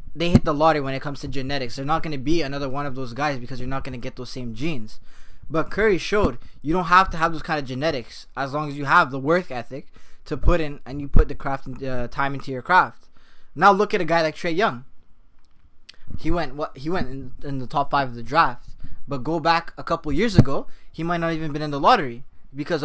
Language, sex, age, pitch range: English, male, 20-39, 130-160 Hz